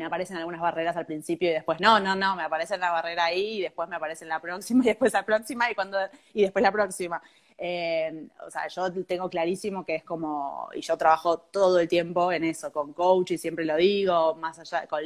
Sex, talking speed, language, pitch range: female, 225 wpm, Spanish, 165-195 Hz